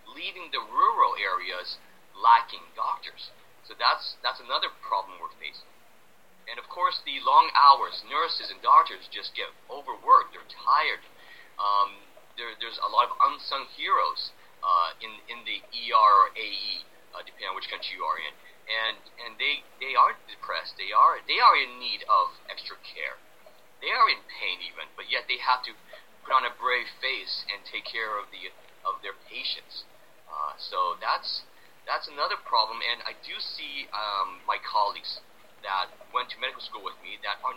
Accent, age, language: American, 40-59, English